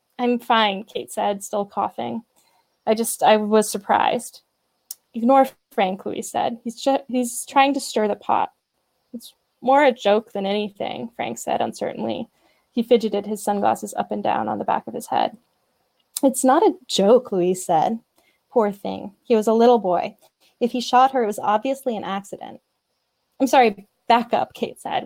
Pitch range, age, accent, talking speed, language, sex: 205-255 Hz, 10-29, American, 175 wpm, English, female